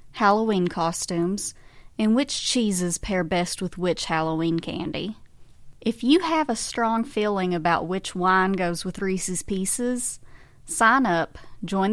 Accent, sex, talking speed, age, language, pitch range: American, female, 135 wpm, 20-39, English, 175-220 Hz